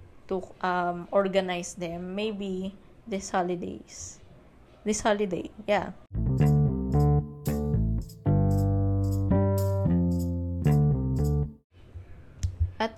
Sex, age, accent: female, 20-39, native